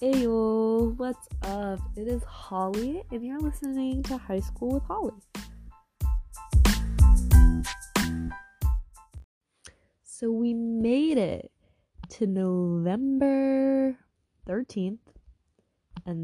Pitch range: 160-230 Hz